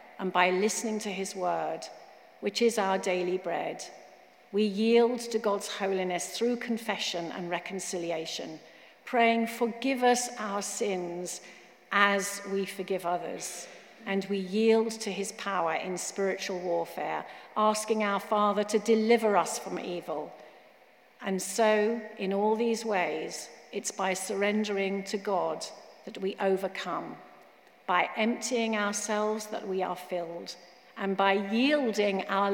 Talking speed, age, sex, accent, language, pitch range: 130 wpm, 50-69, female, British, English, 190-225 Hz